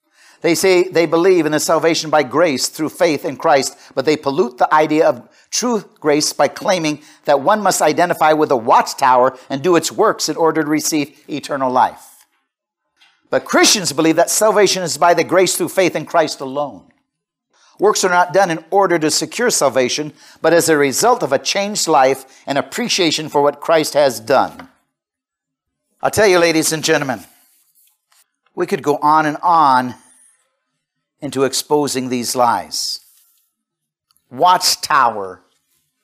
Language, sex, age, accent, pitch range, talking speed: English, male, 50-69, American, 145-185 Hz, 160 wpm